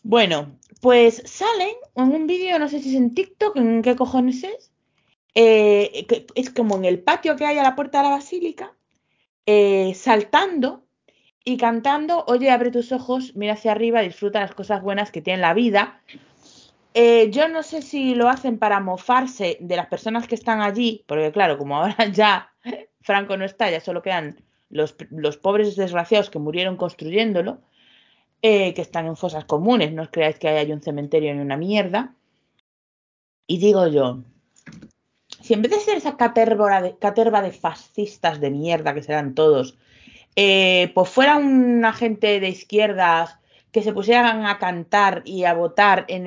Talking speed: 175 wpm